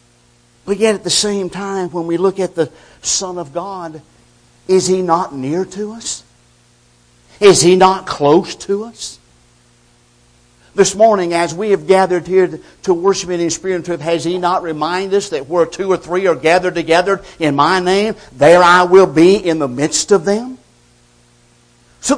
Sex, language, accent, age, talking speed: male, English, American, 60-79, 180 wpm